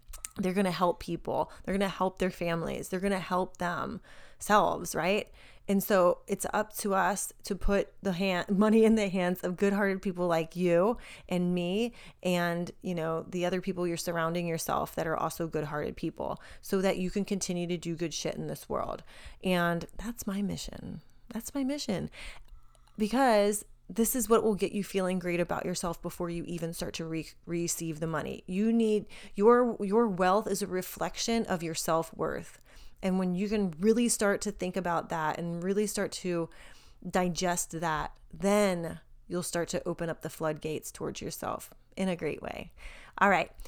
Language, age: English, 30-49